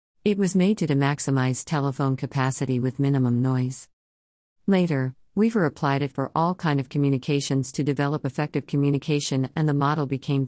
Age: 50-69